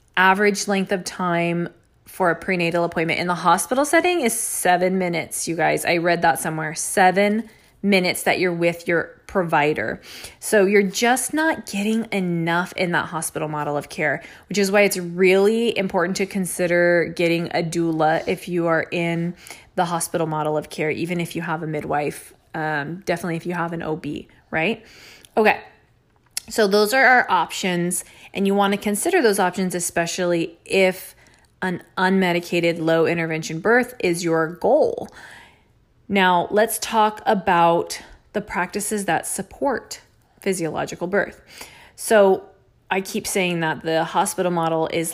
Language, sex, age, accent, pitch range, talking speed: English, female, 20-39, American, 170-200 Hz, 155 wpm